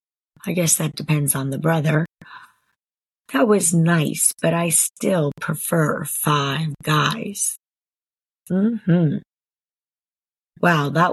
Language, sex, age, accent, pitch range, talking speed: English, female, 40-59, American, 155-200 Hz, 100 wpm